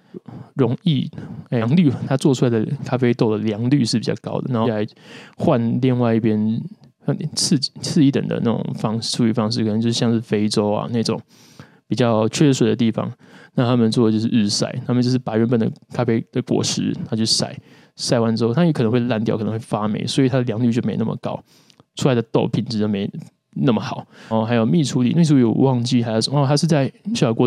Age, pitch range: 20-39, 115-135 Hz